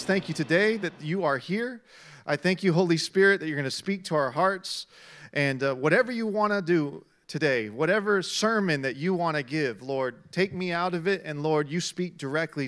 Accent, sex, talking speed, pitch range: American, male, 220 wpm, 145-195 Hz